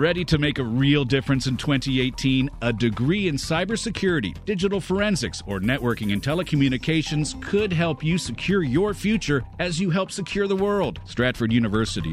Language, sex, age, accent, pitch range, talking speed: English, male, 50-69, American, 120-175 Hz, 160 wpm